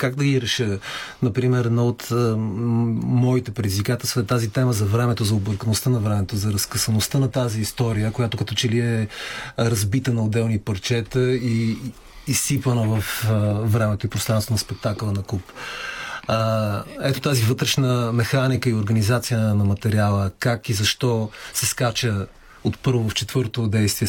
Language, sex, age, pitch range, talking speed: Bulgarian, male, 30-49, 105-120 Hz, 155 wpm